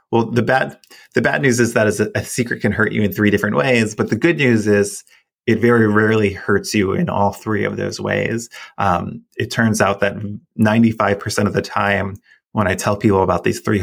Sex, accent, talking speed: male, American, 215 wpm